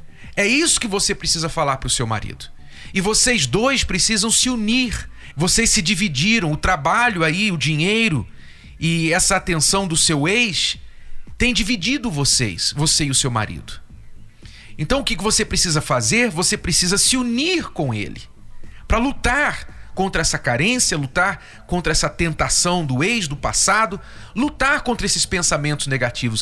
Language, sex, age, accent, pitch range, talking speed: Portuguese, male, 40-59, Brazilian, 120-185 Hz, 150 wpm